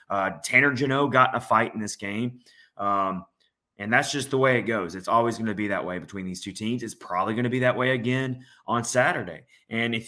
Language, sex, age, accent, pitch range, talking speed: English, male, 30-49, American, 100-125 Hz, 245 wpm